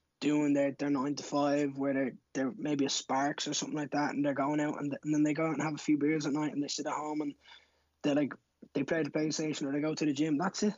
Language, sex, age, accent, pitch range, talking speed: English, male, 20-39, Irish, 140-160 Hz, 305 wpm